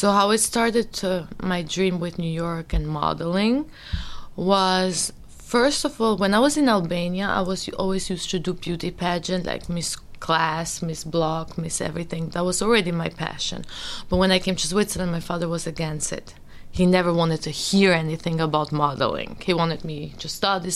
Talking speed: 190 wpm